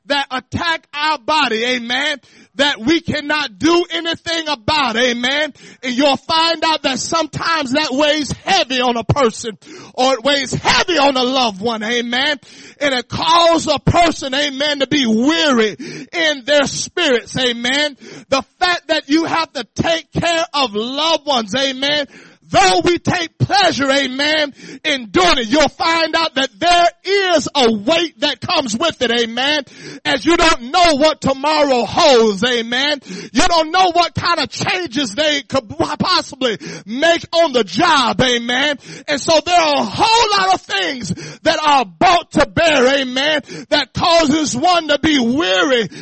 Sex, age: male, 30-49